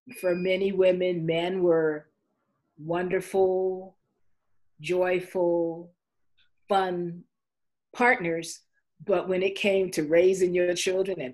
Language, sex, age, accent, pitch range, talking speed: English, female, 40-59, American, 155-185 Hz, 95 wpm